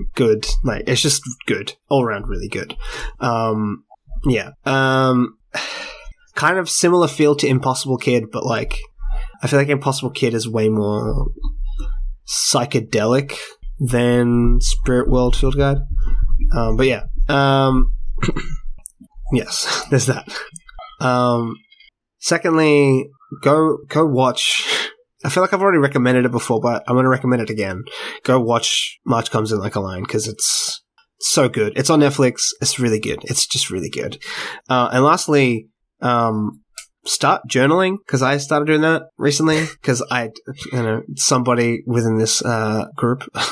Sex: male